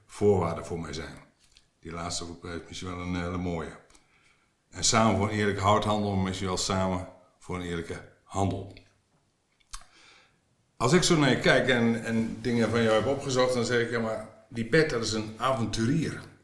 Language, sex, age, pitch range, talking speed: Dutch, male, 60-79, 95-115 Hz, 185 wpm